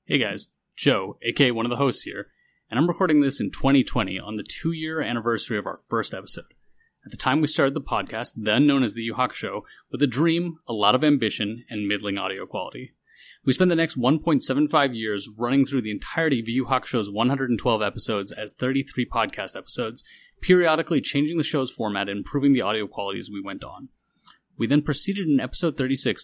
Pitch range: 115-155 Hz